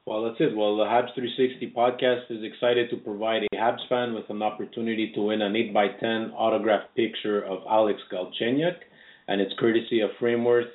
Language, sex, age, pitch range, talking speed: English, male, 30-49, 110-125 Hz, 185 wpm